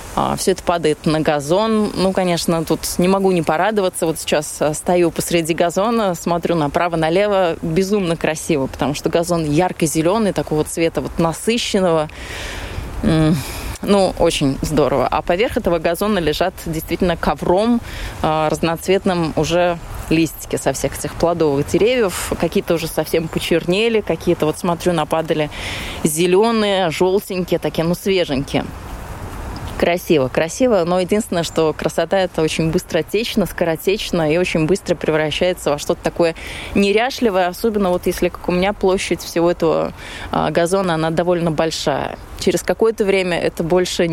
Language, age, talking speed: Russian, 20-39, 130 wpm